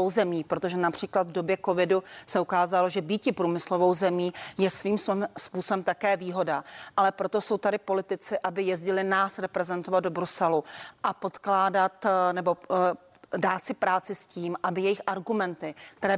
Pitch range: 180-205 Hz